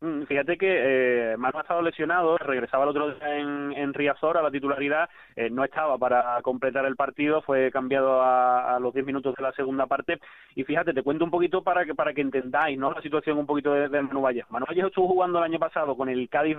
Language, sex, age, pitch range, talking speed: Spanish, male, 20-39, 130-155 Hz, 235 wpm